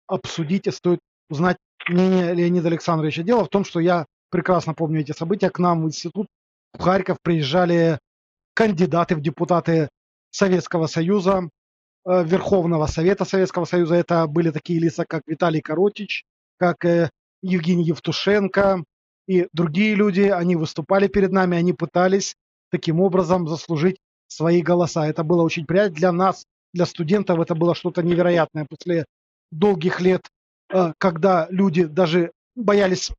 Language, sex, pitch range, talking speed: Russian, male, 165-190 Hz, 135 wpm